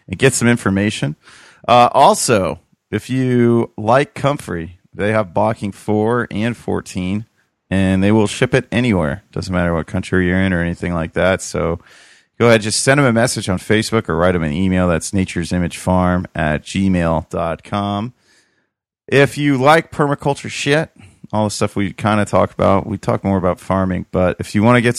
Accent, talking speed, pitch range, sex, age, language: American, 180 wpm, 90-120 Hz, male, 30-49, English